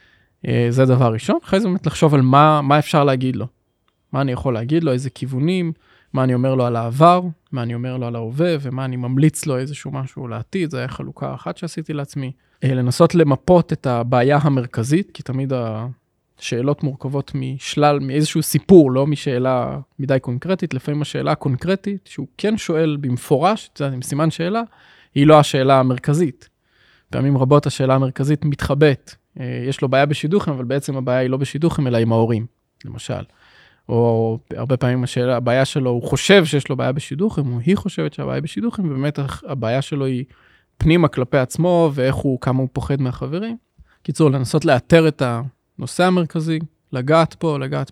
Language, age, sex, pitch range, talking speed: Hebrew, 20-39, male, 130-160 Hz, 170 wpm